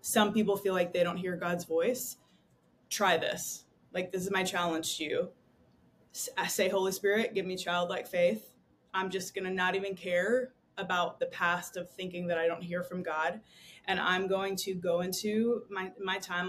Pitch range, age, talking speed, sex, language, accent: 170-195 Hz, 20-39, 190 wpm, female, English, American